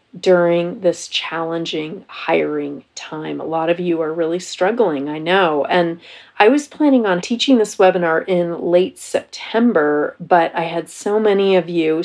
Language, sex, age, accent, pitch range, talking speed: English, female, 30-49, American, 165-205 Hz, 160 wpm